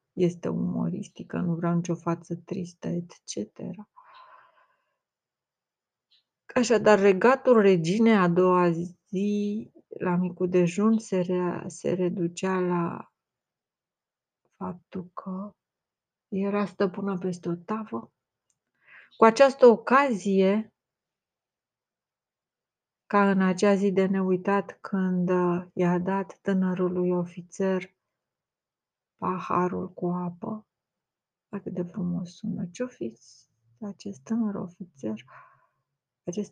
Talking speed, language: 90 wpm, Romanian